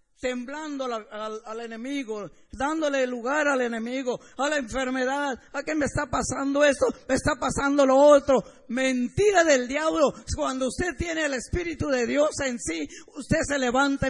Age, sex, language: 50-69, female, Spanish